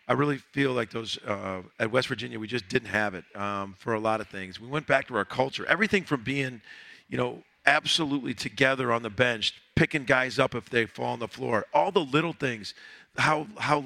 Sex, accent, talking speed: male, American, 220 wpm